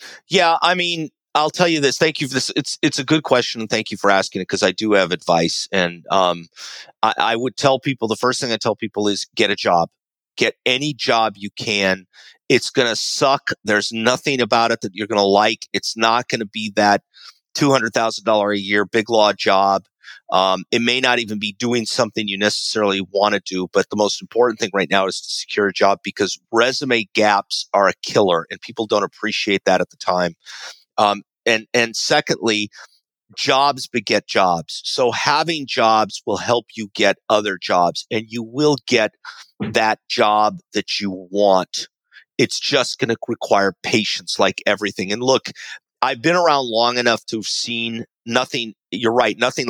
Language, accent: English, American